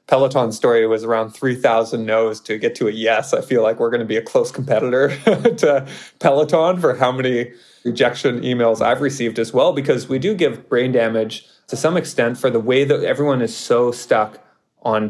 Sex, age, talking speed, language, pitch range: male, 20-39, 200 wpm, English, 110-125 Hz